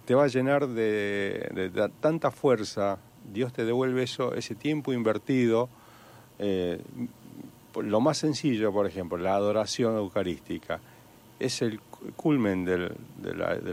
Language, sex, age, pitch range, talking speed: Spanish, male, 40-59, 100-125 Hz, 140 wpm